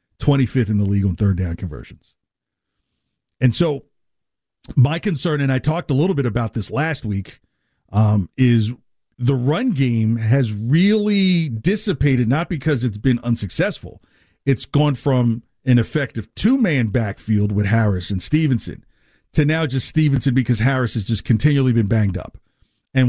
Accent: American